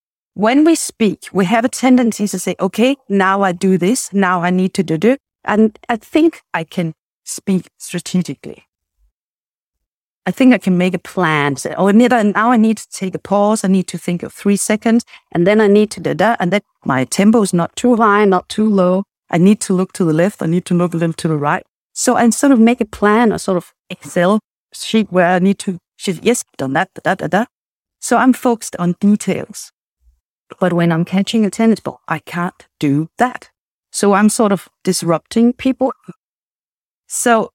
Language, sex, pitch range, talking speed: English, female, 175-220 Hz, 210 wpm